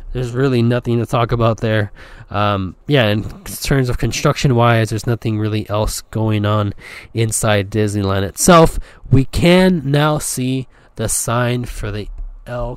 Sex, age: male, 20-39